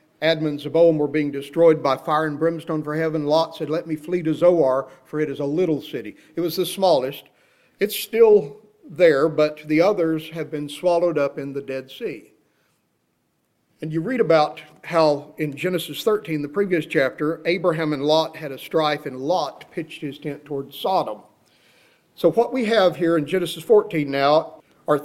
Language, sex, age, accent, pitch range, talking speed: English, male, 50-69, American, 145-170 Hz, 185 wpm